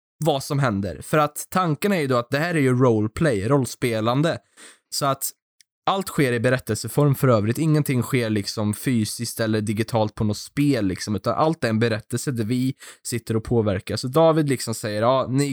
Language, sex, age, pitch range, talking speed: Swedish, male, 20-39, 120-160 Hz, 195 wpm